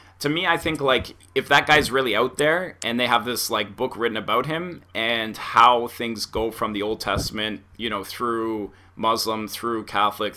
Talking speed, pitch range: 195 wpm, 110-120 Hz